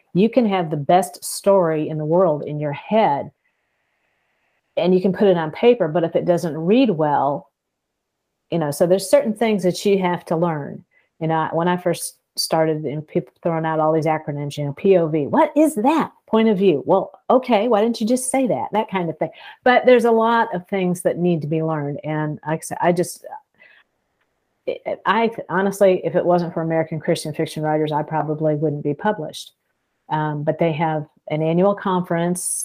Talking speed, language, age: 195 wpm, English, 40-59